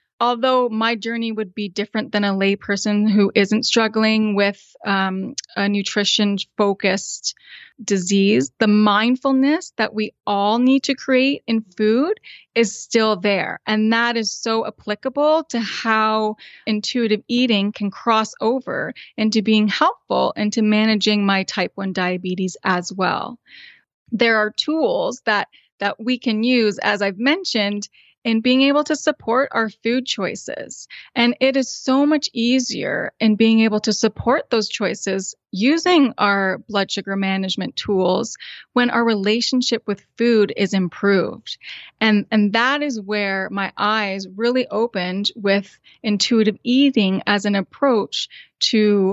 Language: English